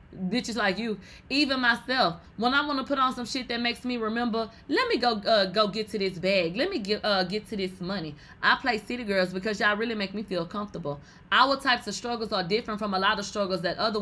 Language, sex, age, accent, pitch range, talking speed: English, female, 20-39, American, 185-245 Hz, 250 wpm